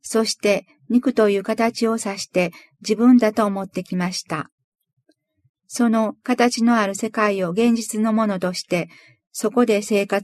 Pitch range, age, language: 185-235 Hz, 40-59, Japanese